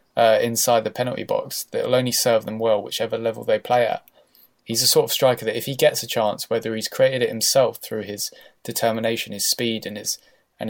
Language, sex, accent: English, male, British